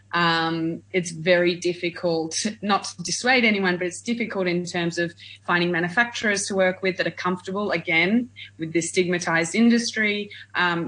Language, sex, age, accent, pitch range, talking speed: English, female, 30-49, Australian, 165-190 Hz, 155 wpm